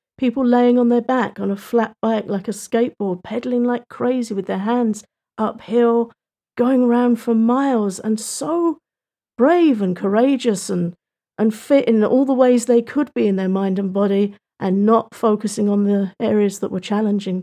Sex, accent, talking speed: female, British, 180 wpm